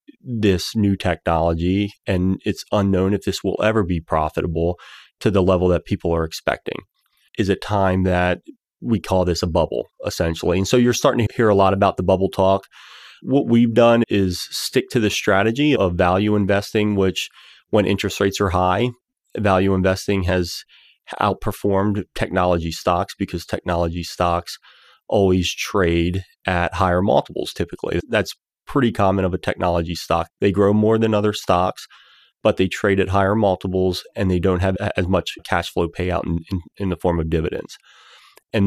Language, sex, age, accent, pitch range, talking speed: English, male, 30-49, American, 90-105 Hz, 170 wpm